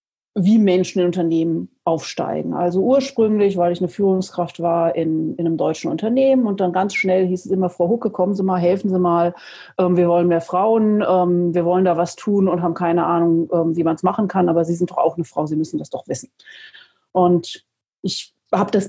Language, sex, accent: German, female, German